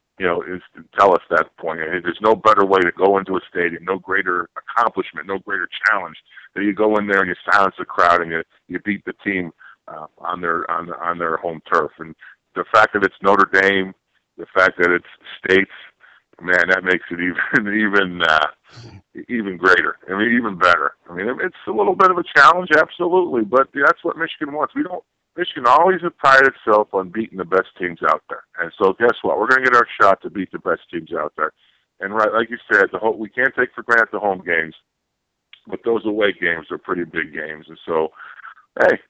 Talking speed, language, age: 225 wpm, English, 50-69